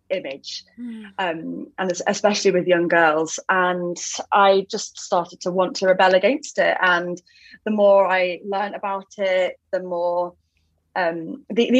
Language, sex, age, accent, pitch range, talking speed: English, female, 20-39, British, 180-225 Hz, 140 wpm